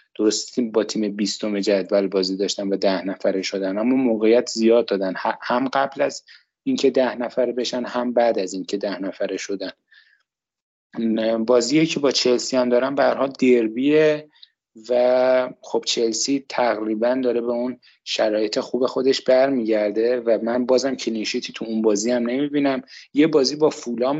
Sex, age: male, 30-49